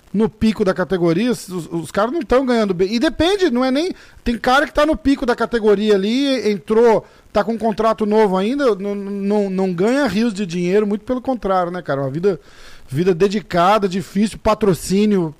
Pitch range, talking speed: 170-215 Hz, 195 wpm